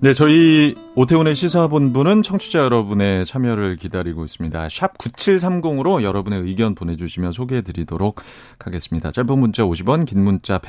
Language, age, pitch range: Korean, 30-49, 90-135 Hz